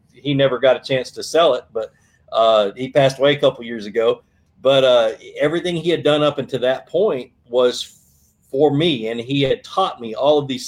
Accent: American